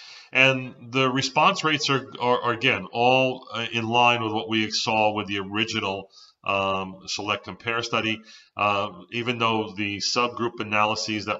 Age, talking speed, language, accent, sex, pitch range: 40-59, 155 wpm, English, American, male, 100-120 Hz